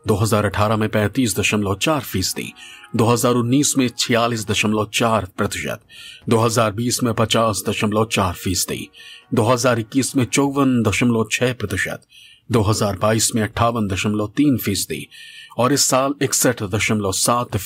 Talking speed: 80 wpm